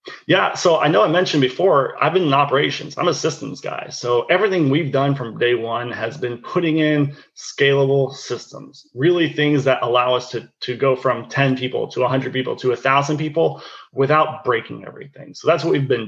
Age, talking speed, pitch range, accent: 30-49, 200 wpm, 125-145 Hz, American